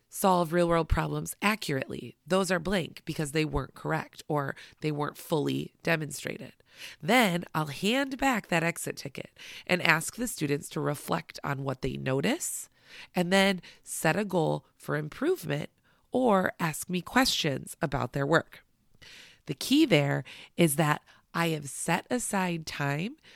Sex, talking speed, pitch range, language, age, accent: female, 145 wpm, 150-195 Hz, English, 30-49, American